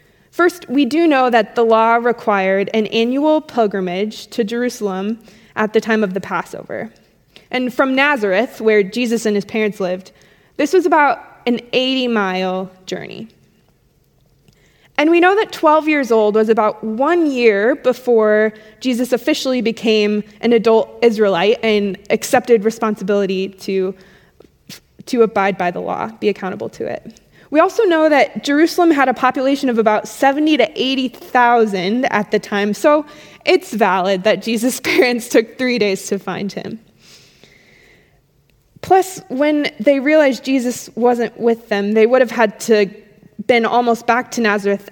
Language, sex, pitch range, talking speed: English, female, 210-260 Hz, 150 wpm